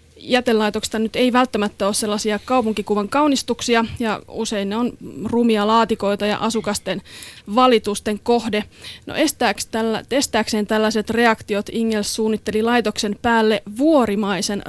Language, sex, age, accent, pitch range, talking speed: Finnish, female, 30-49, native, 210-245 Hz, 110 wpm